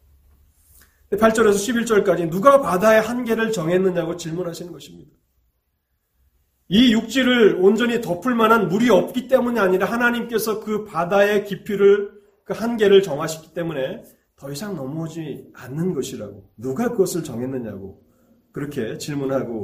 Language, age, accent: Korean, 30-49, native